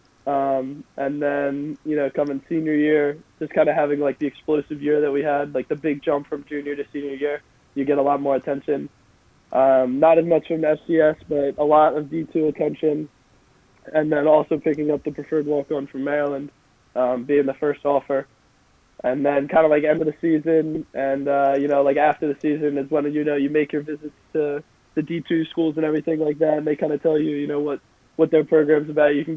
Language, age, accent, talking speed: English, 20-39, American, 225 wpm